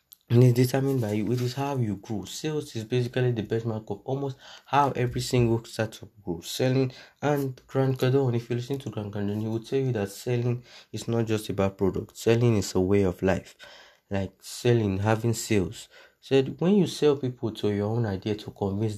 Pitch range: 100-125 Hz